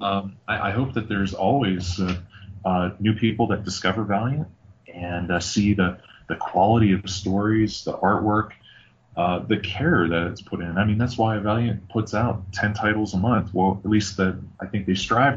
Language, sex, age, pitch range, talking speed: English, male, 20-39, 95-115 Hz, 195 wpm